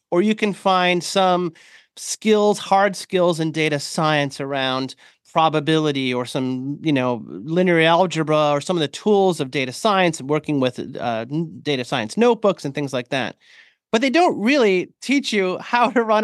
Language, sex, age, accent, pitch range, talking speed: English, male, 30-49, American, 160-220 Hz, 170 wpm